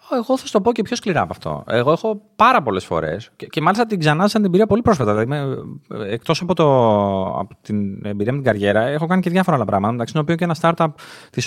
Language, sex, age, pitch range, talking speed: Greek, male, 30-49, 105-155 Hz, 240 wpm